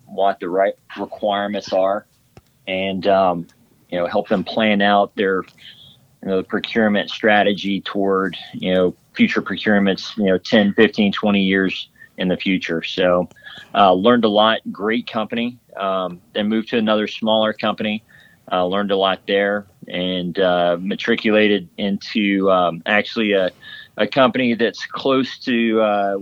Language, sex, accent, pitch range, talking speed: English, male, American, 90-105 Hz, 150 wpm